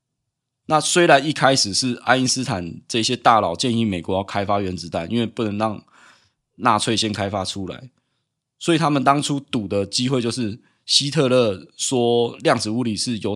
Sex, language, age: male, Chinese, 20-39